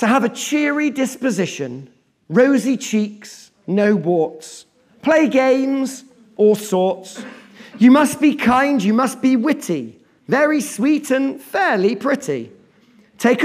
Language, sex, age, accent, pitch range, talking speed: English, male, 40-59, British, 175-255 Hz, 120 wpm